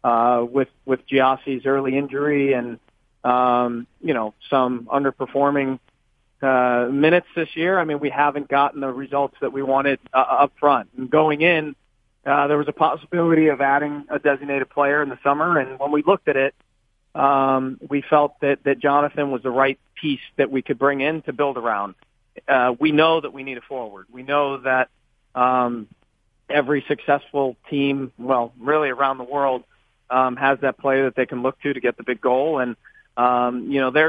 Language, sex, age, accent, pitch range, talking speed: English, male, 40-59, American, 125-145 Hz, 190 wpm